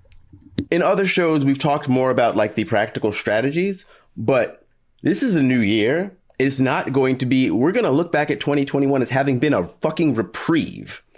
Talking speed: 185 wpm